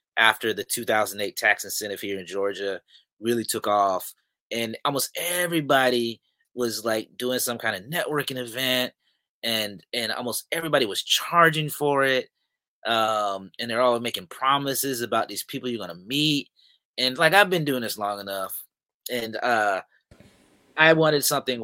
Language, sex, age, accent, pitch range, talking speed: English, male, 30-49, American, 110-145 Hz, 155 wpm